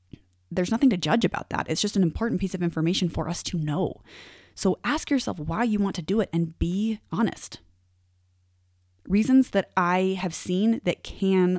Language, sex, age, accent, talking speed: English, female, 30-49, American, 185 wpm